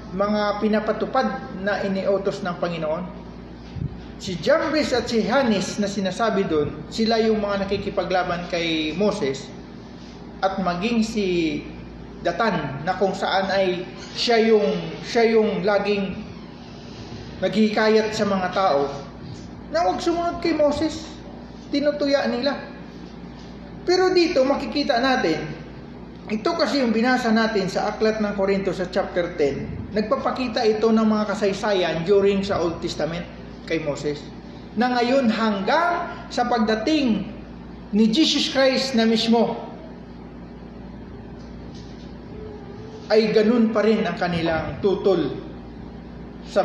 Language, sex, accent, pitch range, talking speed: English, male, Filipino, 180-230 Hz, 115 wpm